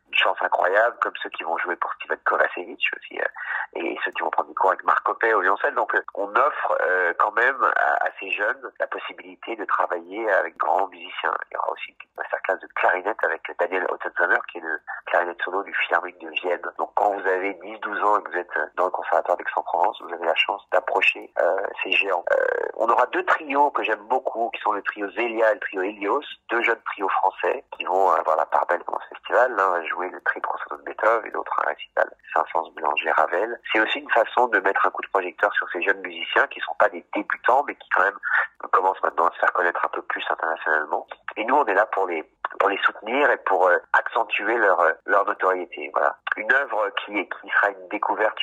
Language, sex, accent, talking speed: French, male, French, 235 wpm